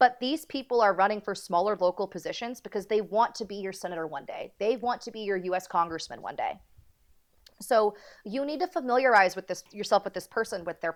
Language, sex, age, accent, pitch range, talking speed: English, female, 30-49, American, 185-225 Hz, 220 wpm